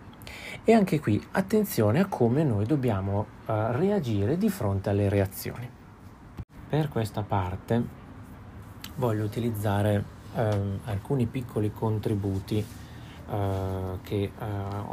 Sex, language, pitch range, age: male, Italian, 100-125 Hz, 30-49